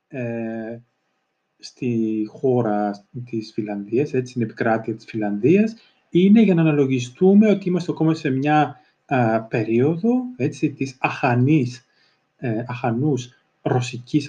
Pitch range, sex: 115-155 Hz, male